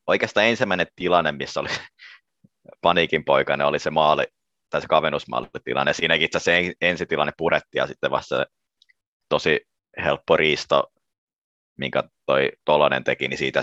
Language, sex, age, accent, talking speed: Finnish, male, 30-49, native, 135 wpm